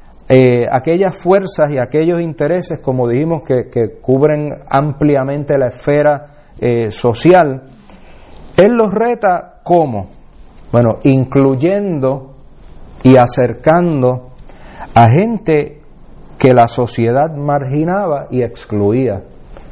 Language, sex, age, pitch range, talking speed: English, male, 40-59, 120-160 Hz, 95 wpm